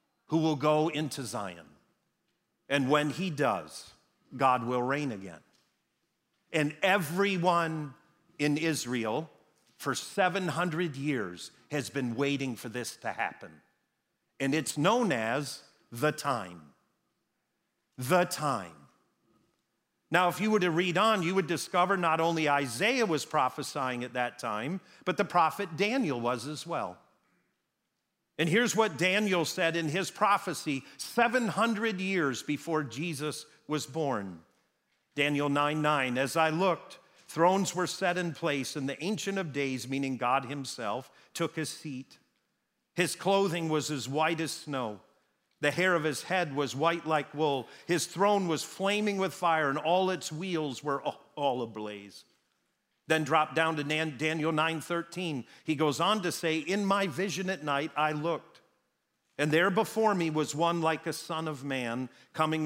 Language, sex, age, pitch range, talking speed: English, male, 50-69, 140-180 Hz, 150 wpm